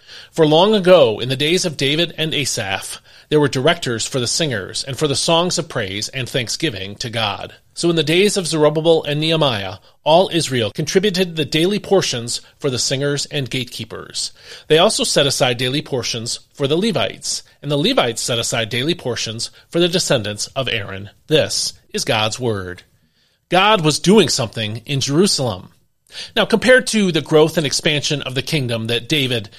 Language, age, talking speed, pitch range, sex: English, 30-49, 180 wpm, 120-175 Hz, male